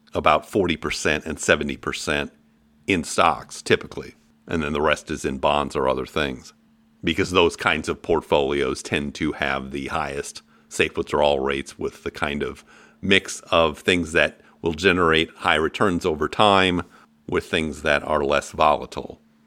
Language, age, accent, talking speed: English, 50-69, American, 155 wpm